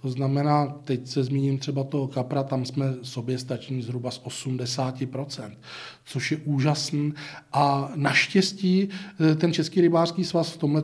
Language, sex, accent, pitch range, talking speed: Czech, male, native, 135-155 Hz, 140 wpm